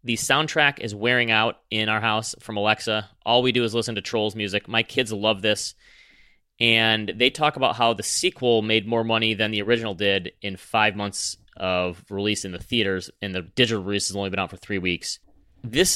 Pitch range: 105-125 Hz